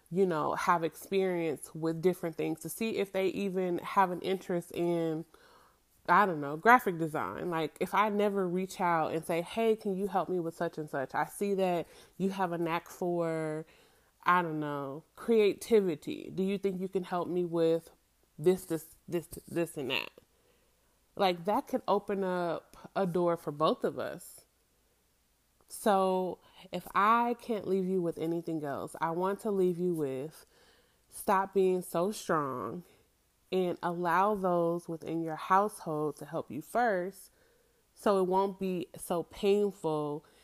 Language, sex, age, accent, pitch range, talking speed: English, female, 30-49, American, 160-195 Hz, 165 wpm